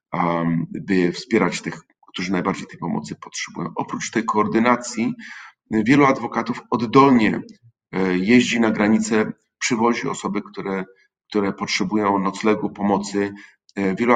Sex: male